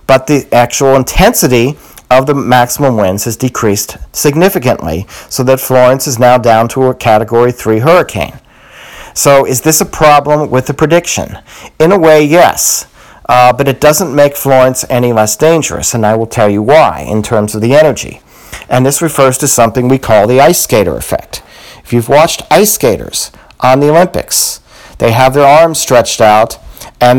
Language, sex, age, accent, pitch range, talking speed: English, male, 40-59, American, 115-140 Hz, 175 wpm